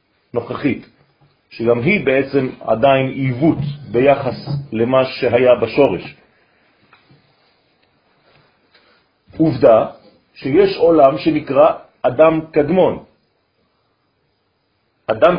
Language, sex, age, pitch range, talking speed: French, male, 40-59, 125-160 Hz, 60 wpm